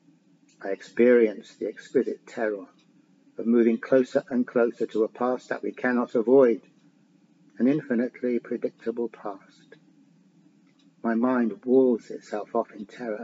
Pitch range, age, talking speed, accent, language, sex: 110-125 Hz, 50-69, 125 wpm, British, English, male